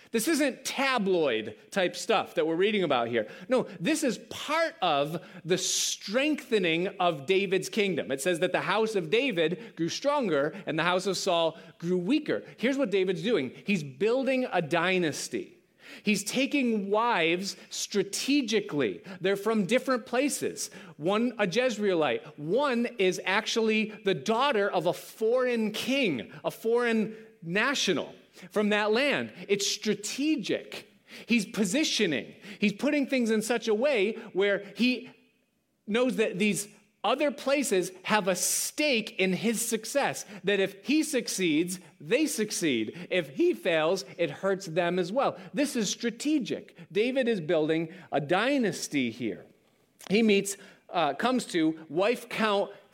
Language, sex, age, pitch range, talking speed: English, male, 30-49, 185-240 Hz, 140 wpm